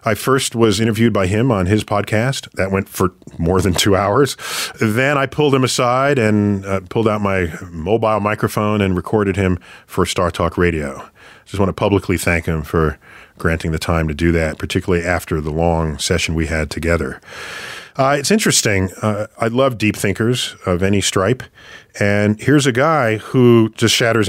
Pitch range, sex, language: 95-125 Hz, male, English